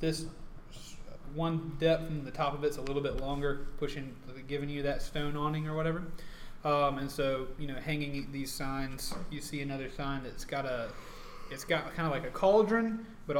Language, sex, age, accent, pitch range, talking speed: English, male, 20-39, American, 135-160 Hz, 195 wpm